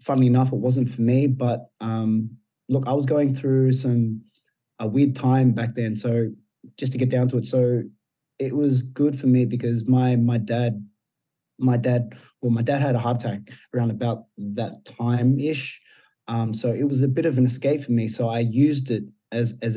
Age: 20-39